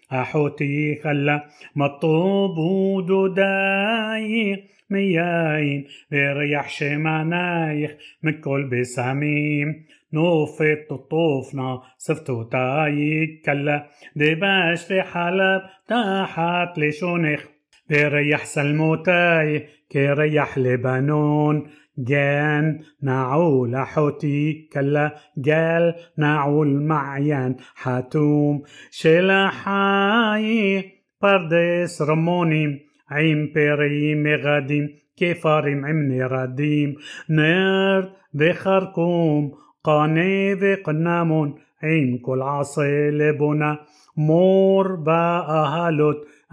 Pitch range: 145-175 Hz